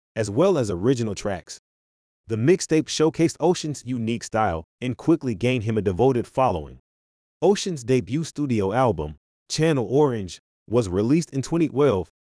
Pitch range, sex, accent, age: 100-145 Hz, male, American, 30-49